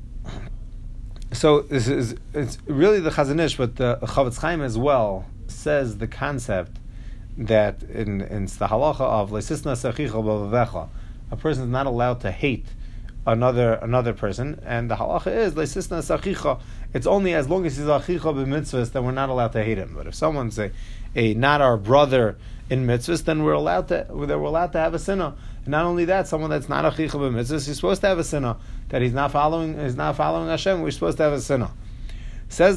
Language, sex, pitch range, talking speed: English, male, 115-155 Hz, 185 wpm